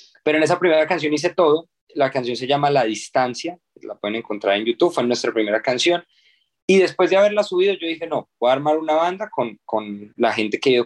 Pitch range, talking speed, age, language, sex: 120-150 Hz, 240 wpm, 20-39, Spanish, male